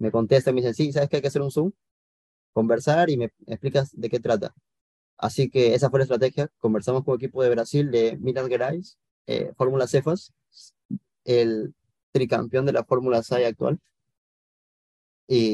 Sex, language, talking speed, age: male, Spanish, 175 wpm, 30-49